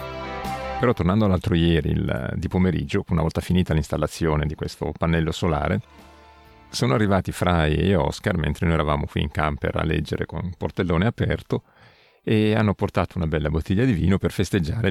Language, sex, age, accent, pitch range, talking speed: Italian, male, 40-59, native, 80-95 Hz, 170 wpm